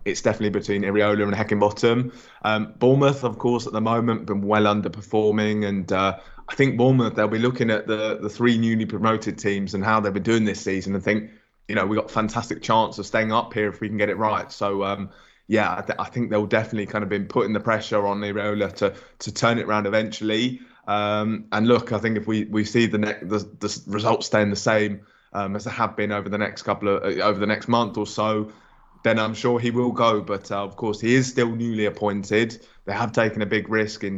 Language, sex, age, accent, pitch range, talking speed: English, male, 20-39, British, 100-110 Hz, 235 wpm